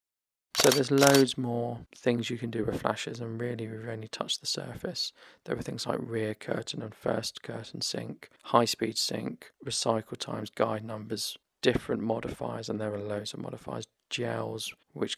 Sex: male